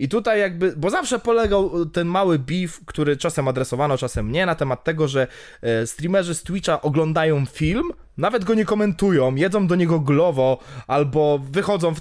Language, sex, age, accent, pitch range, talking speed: Polish, male, 20-39, native, 145-195 Hz, 170 wpm